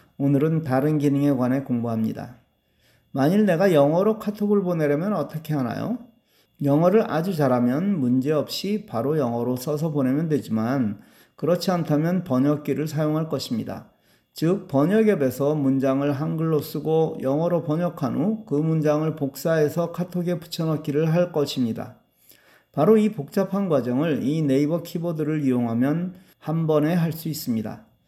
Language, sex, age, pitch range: Korean, male, 40-59, 135-180 Hz